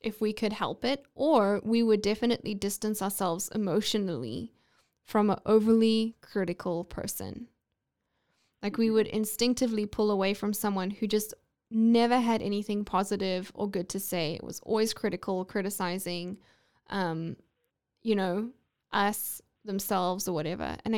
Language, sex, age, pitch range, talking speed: English, female, 10-29, 200-235 Hz, 135 wpm